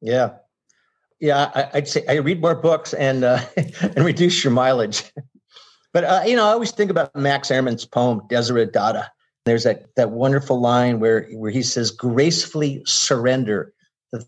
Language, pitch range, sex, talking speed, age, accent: English, 120-155 Hz, male, 170 wpm, 50-69, American